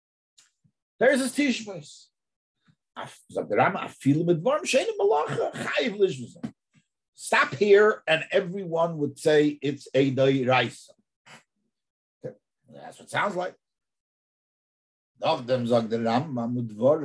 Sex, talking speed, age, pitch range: male, 55 wpm, 50-69, 125-185 Hz